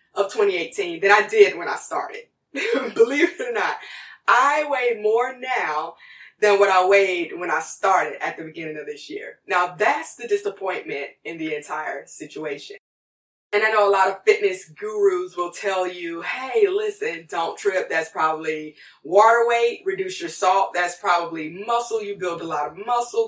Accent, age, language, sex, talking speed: American, 20-39, English, female, 175 wpm